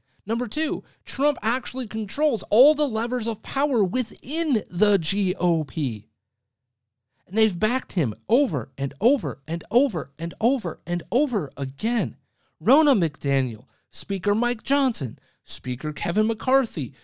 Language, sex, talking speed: English, male, 125 wpm